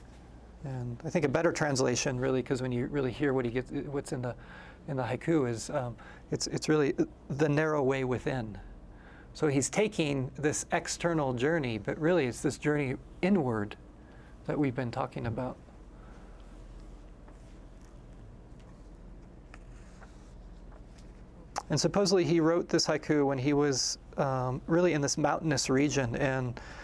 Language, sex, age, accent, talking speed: English, male, 40-59, American, 140 wpm